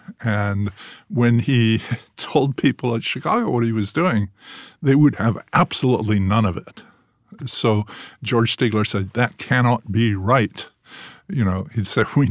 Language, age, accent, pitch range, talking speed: English, 50-69, American, 100-125 Hz, 150 wpm